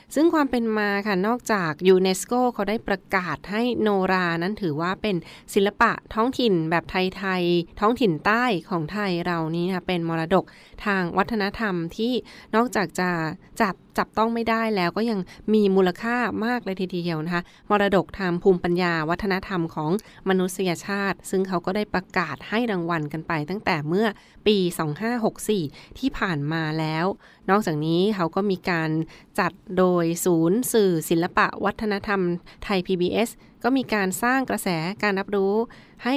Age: 20-39